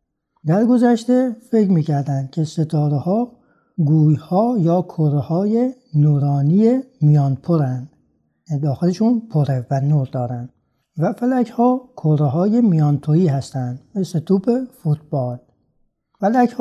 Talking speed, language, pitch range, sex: 100 wpm, Persian, 140-195 Hz, male